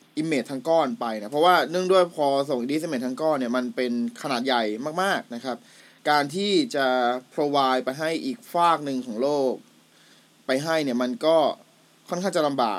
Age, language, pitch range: 20-39, Thai, 125-160 Hz